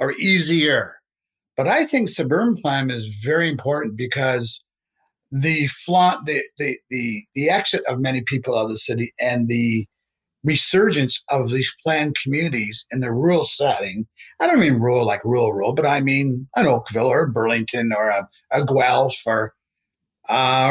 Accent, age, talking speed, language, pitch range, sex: American, 50-69, 165 wpm, English, 125-180 Hz, male